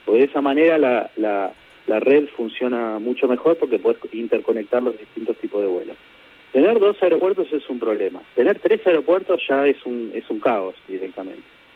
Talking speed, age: 180 wpm, 40-59